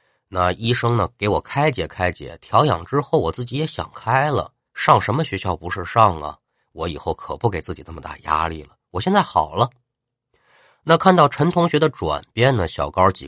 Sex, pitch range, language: male, 90-145 Hz, Chinese